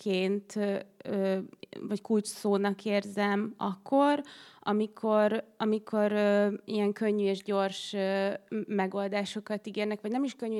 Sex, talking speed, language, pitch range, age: female, 110 wpm, Hungarian, 195-210 Hz, 20-39